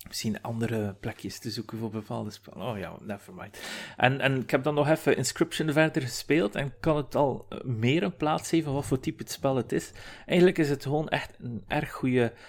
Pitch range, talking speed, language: 100-125 Hz, 210 wpm, Dutch